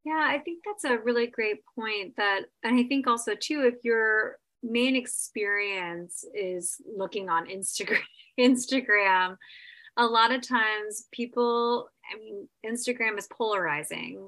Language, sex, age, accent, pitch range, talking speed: English, female, 20-39, American, 190-235 Hz, 140 wpm